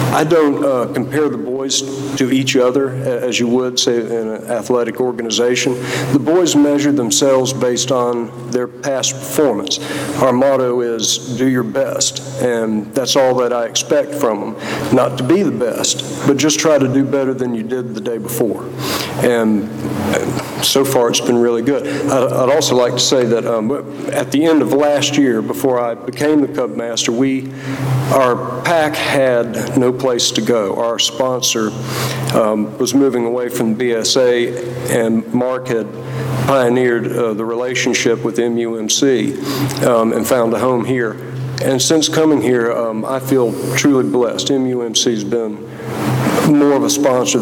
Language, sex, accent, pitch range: English, male, American, 115-135 Hz